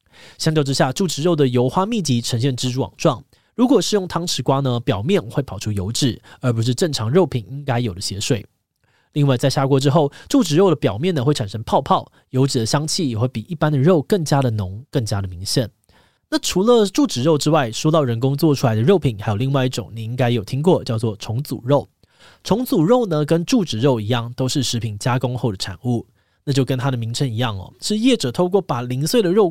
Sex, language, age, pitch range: male, Chinese, 20-39, 115-155 Hz